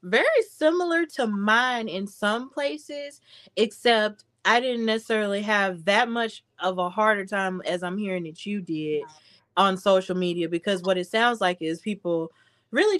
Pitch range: 180-220 Hz